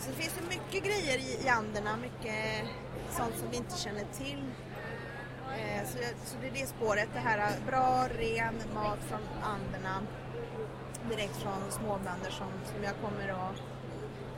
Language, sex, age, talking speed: Swedish, female, 30-49, 145 wpm